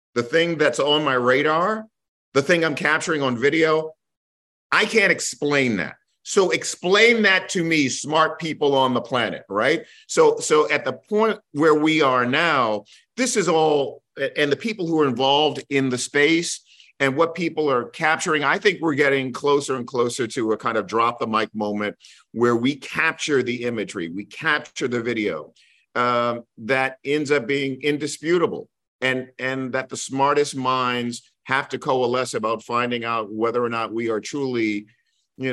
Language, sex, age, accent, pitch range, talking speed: English, male, 50-69, American, 125-165 Hz, 170 wpm